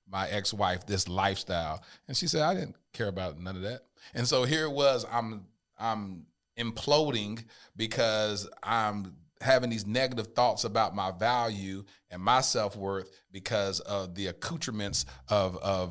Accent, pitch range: American, 95-120 Hz